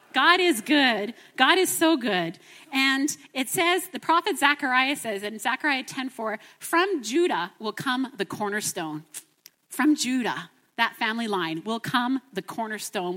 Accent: American